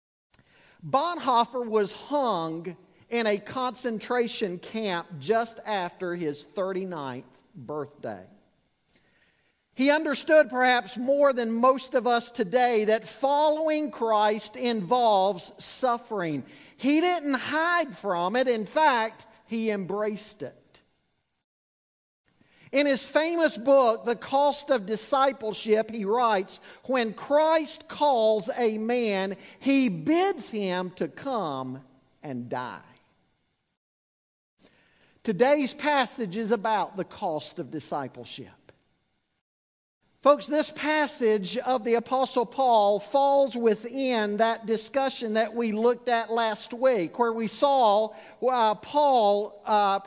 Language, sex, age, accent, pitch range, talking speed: English, male, 50-69, American, 210-275 Hz, 105 wpm